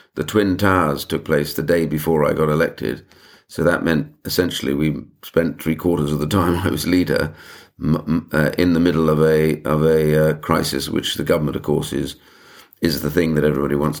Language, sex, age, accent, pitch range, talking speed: English, male, 50-69, British, 75-85 Hz, 205 wpm